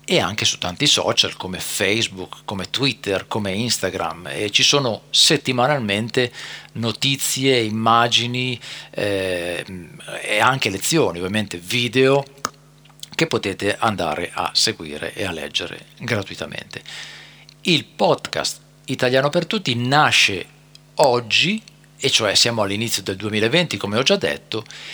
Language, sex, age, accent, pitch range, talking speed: Italian, male, 50-69, native, 100-150 Hz, 120 wpm